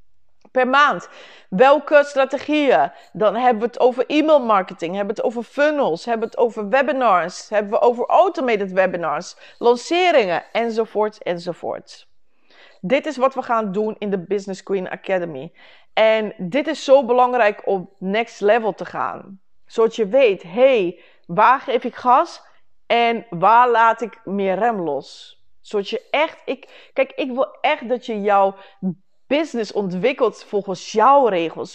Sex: female